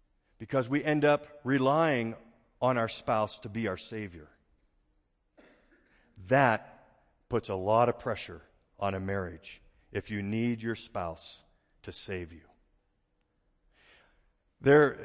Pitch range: 95-120 Hz